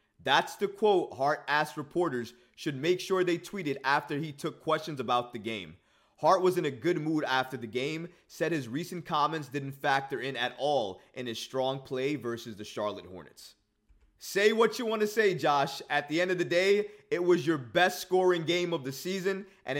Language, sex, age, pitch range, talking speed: English, male, 20-39, 145-185 Hz, 205 wpm